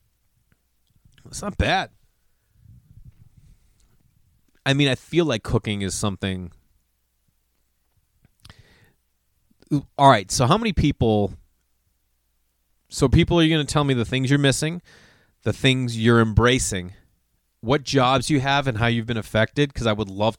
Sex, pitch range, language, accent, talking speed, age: male, 100-135 Hz, English, American, 135 wpm, 30-49